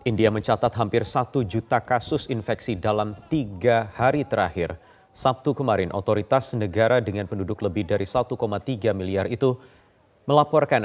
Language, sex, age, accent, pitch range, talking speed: Indonesian, male, 30-49, native, 105-125 Hz, 125 wpm